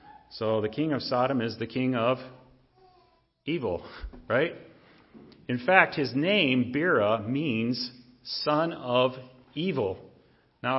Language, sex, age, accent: English, male, 40-59, American